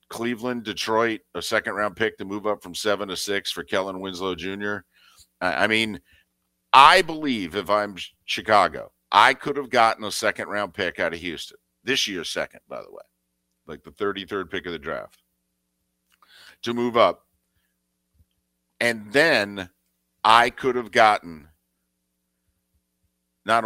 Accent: American